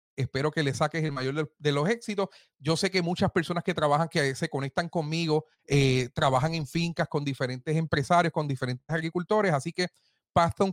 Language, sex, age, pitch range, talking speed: Spanish, male, 30-49, 145-190 Hz, 185 wpm